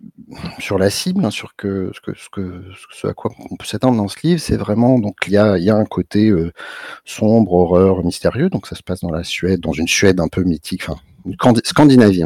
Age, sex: 50-69, male